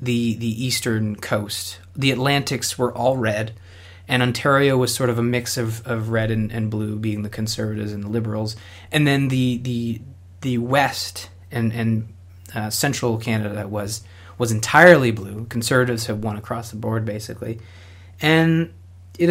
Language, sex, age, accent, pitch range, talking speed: English, male, 30-49, American, 105-125 Hz, 160 wpm